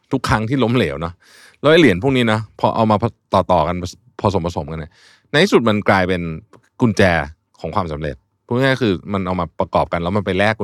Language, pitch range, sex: Thai, 90-125 Hz, male